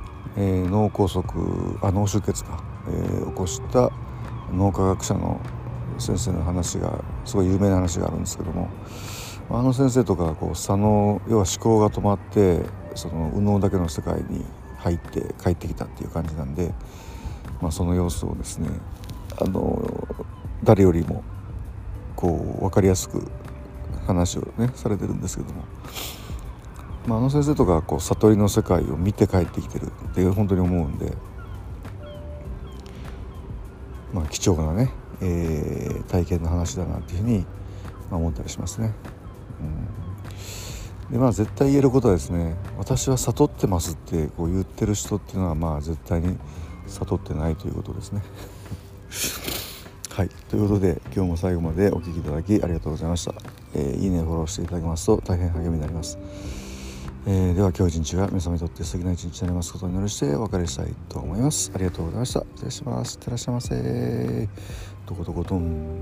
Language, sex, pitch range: Japanese, male, 85-100 Hz